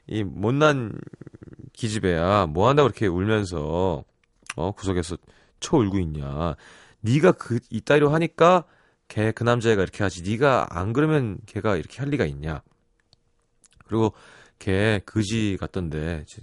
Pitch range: 95-145 Hz